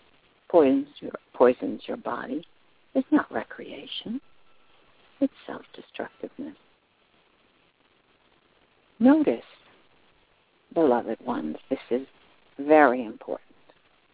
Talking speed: 70 wpm